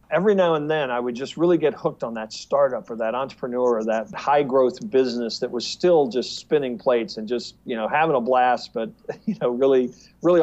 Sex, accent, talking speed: male, American, 225 wpm